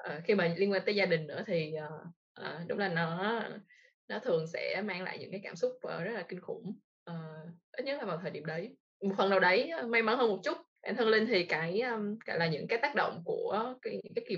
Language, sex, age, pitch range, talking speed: Vietnamese, female, 20-39, 165-220 Hz, 265 wpm